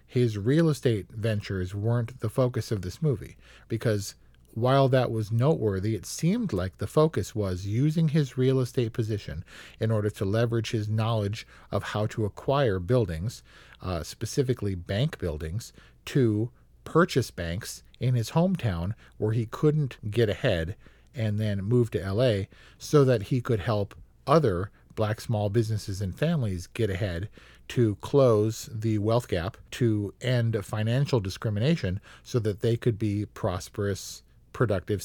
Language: English